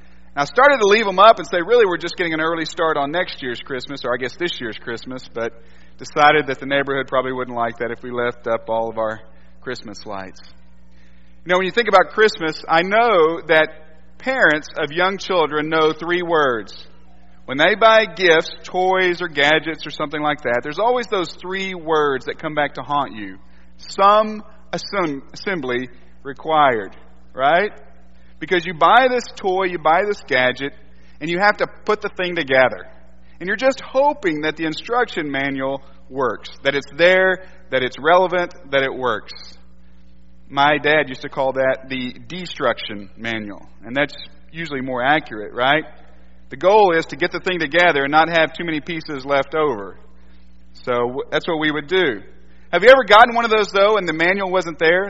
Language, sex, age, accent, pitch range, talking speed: English, male, 40-59, American, 115-180 Hz, 185 wpm